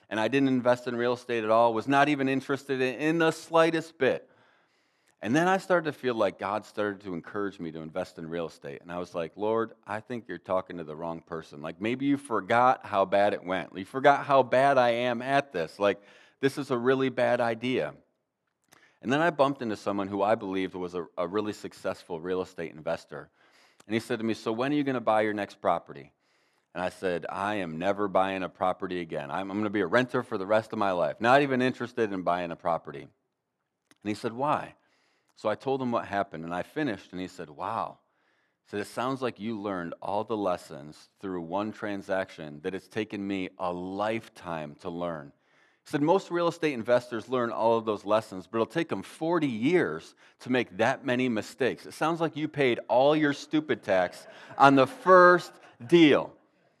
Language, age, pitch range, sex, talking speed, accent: English, 30-49, 95-130 Hz, male, 215 wpm, American